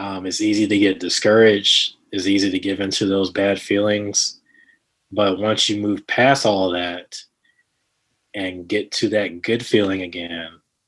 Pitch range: 95-110 Hz